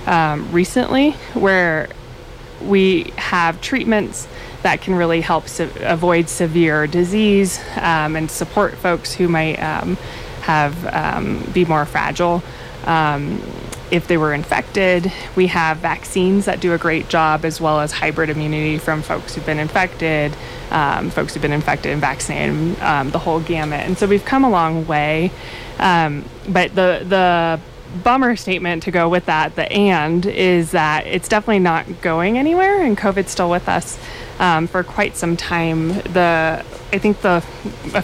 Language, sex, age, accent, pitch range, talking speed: English, female, 20-39, American, 160-190 Hz, 160 wpm